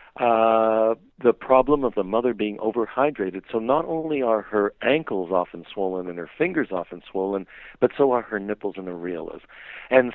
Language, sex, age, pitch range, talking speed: English, male, 60-79, 95-130 Hz, 170 wpm